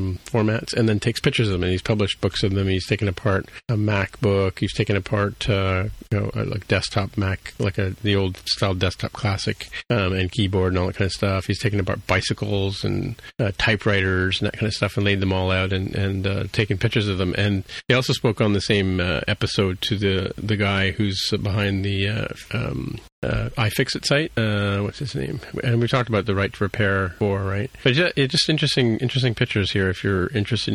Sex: male